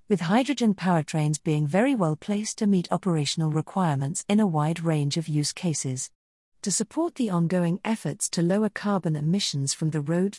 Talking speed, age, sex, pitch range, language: 175 wpm, 40-59, female, 155-210 Hz, English